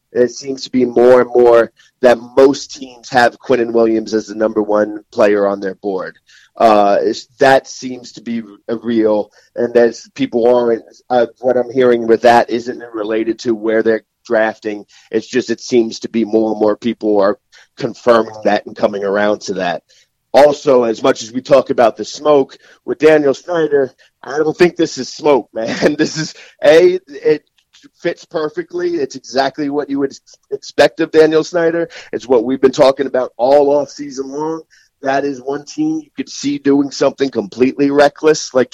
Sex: male